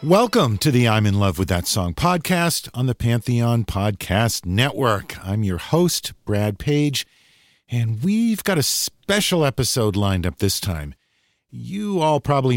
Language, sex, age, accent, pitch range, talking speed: English, male, 50-69, American, 95-140 Hz, 160 wpm